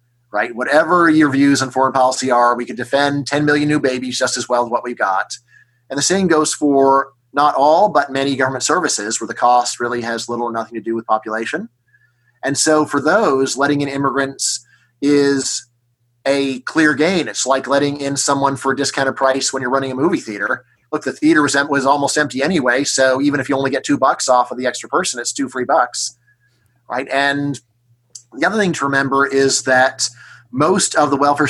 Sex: male